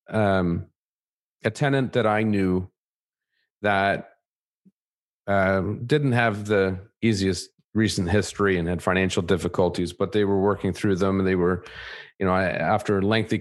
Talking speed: 145 wpm